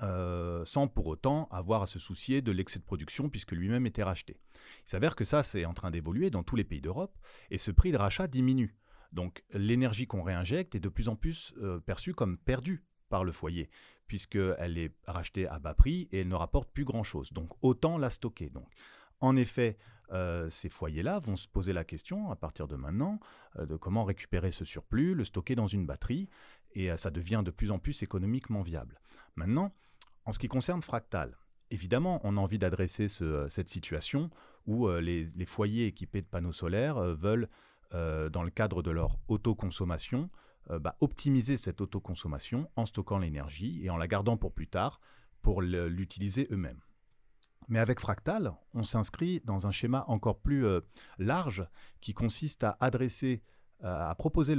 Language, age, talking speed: French, 40-59, 190 wpm